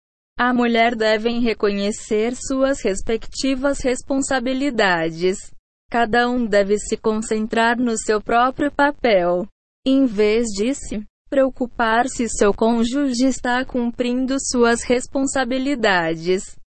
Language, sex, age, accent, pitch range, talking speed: Portuguese, female, 20-39, Brazilian, 215-260 Hz, 100 wpm